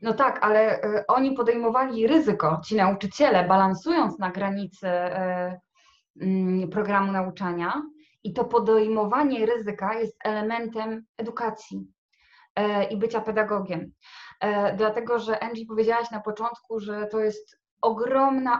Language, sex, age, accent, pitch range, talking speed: Polish, female, 20-39, native, 210-255 Hz, 105 wpm